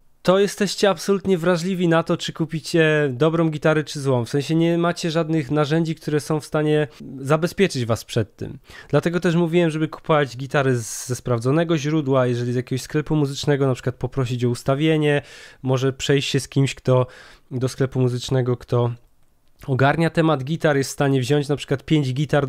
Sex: male